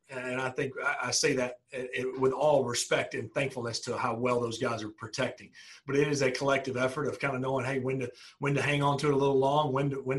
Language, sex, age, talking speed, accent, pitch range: English, male, 40-59, 260 wpm, American, 120-140 Hz